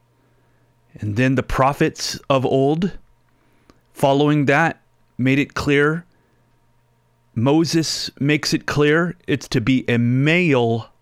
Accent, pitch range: American, 115-130 Hz